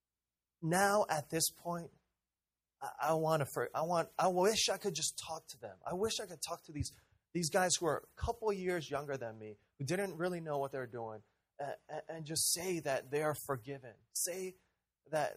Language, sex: English, male